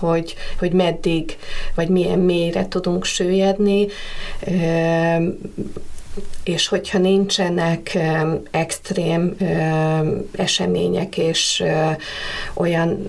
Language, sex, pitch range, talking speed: Hungarian, female, 170-200 Hz, 70 wpm